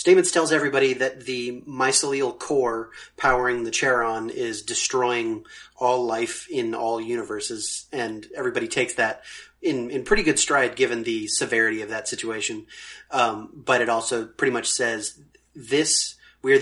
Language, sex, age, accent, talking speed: English, male, 30-49, American, 150 wpm